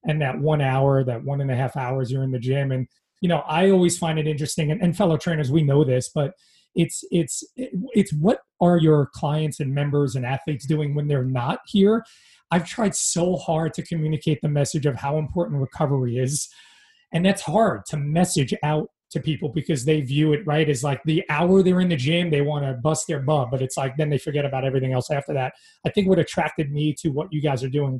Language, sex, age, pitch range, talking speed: English, male, 30-49, 140-165 Hz, 230 wpm